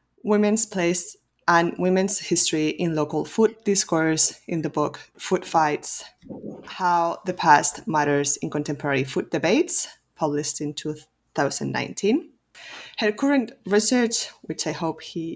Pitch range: 155-210 Hz